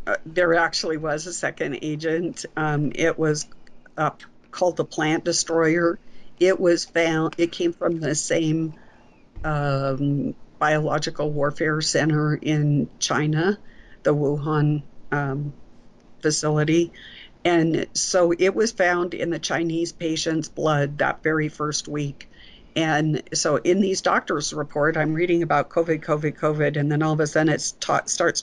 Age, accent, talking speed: 50-69, American, 140 wpm